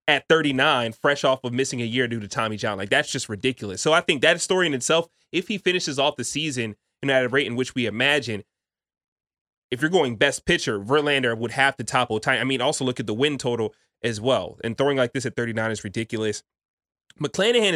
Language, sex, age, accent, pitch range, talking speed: English, male, 20-39, American, 115-135 Hz, 225 wpm